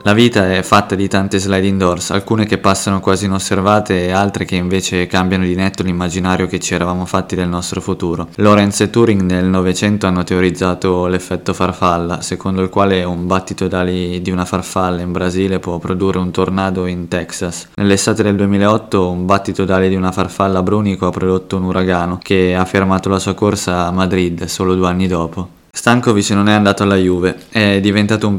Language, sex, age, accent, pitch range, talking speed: Italian, male, 20-39, native, 90-100 Hz, 190 wpm